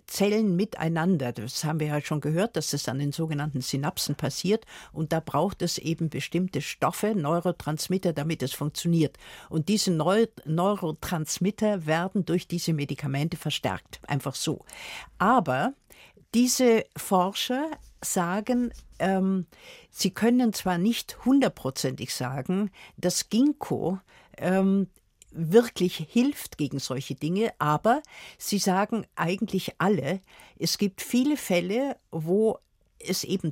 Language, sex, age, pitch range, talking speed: German, female, 60-79, 155-210 Hz, 125 wpm